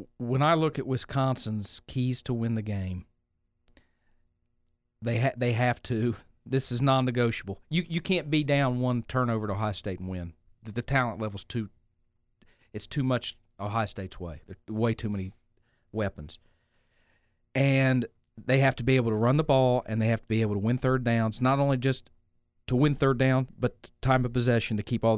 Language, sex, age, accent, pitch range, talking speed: English, male, 40-59, American, 100-125 Hz, 195 wpm